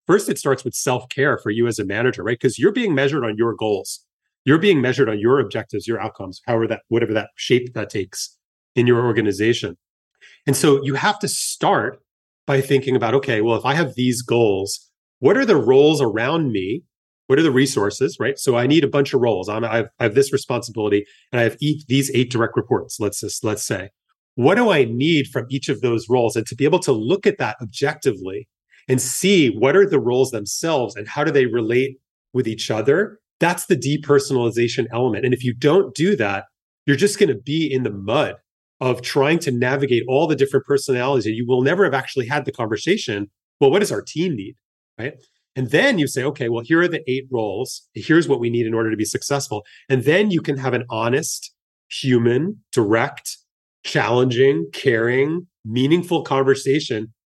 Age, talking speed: 30-49, 205 wpm